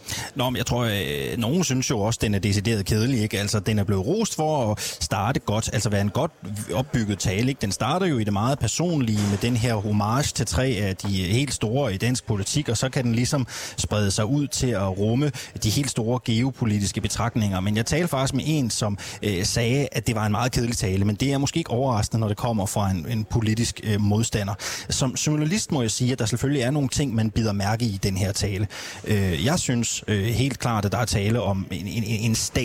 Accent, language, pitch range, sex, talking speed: native, Danish, 105-130 Hz, male, 220 wpm